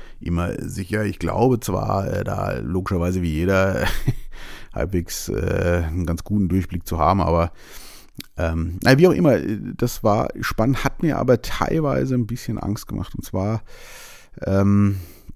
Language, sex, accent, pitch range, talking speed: German, male, German, 90-110 Hz, 135 wpm